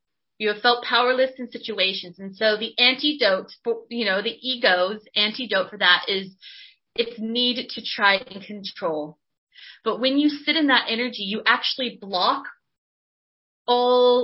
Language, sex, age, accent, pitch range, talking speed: English, female, 20-39, American, 205-250 Hz, 150 wpm